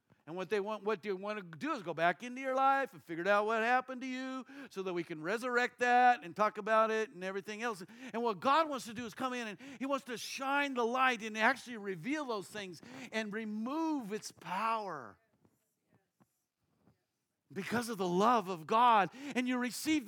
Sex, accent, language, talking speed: male, American, English, 205 wpm